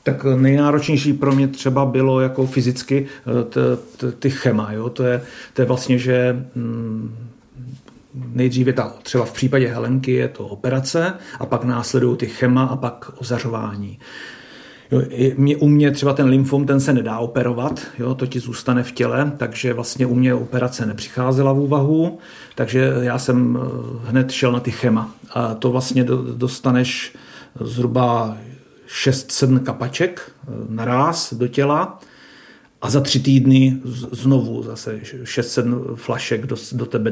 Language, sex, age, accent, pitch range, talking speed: Czech, male, 40-59, native, 120-135 Hz, 145 wpm